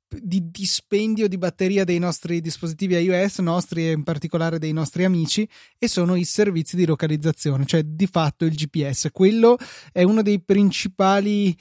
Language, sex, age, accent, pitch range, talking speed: Italian, male, 20-39, native, 155-195 Hz, 160 wpm